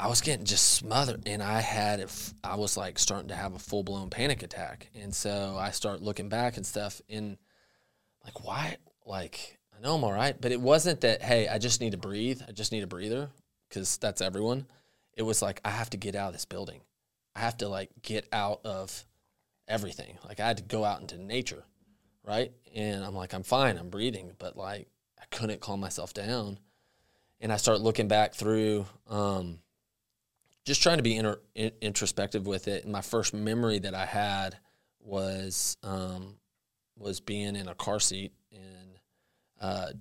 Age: 20-39